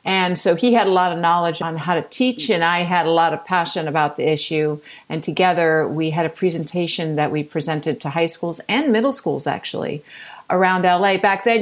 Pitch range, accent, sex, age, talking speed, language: 175-230 Hz, American, female, 50-69, 215 wpm, English